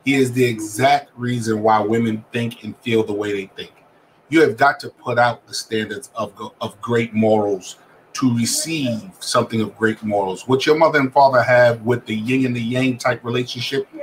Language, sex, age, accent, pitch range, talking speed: English, male, 40-59, American, 115-135 Hz, 195 wpm